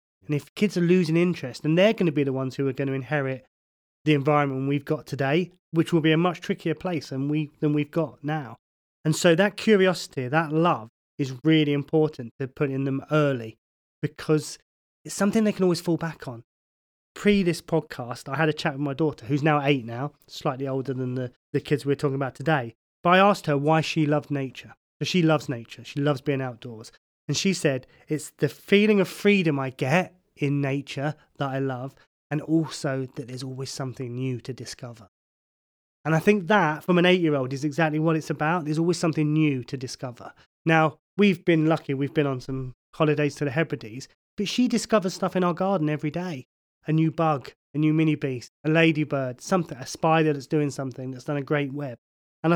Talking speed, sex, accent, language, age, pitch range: 210 wpm, male, British, English, 30-49, 135-165 Hz